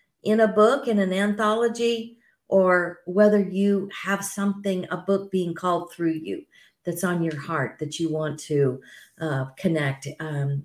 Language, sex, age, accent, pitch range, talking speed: English, female, 50-69, American, 165-230 Hz, 160 wpm